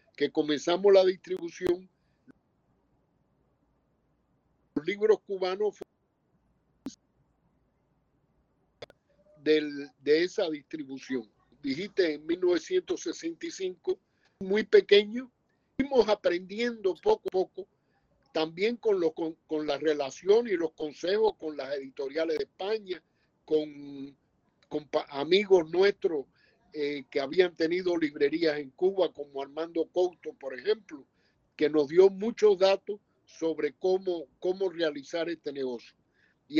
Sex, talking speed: male, 105 wpm